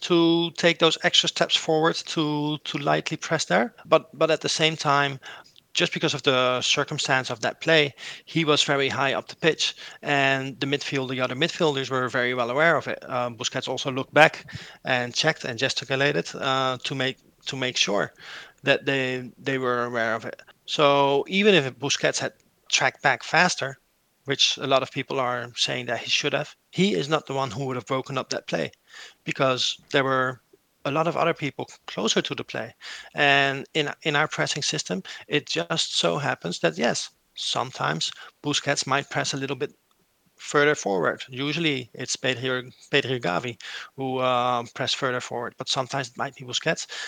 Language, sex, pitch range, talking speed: English, male, 130-150 Hz, 185 wpm